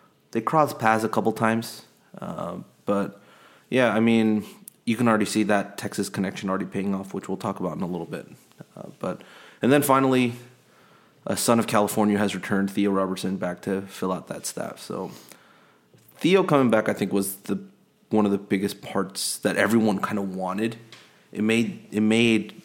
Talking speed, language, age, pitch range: 185 wpm, English, 30-49, 100-115 Hz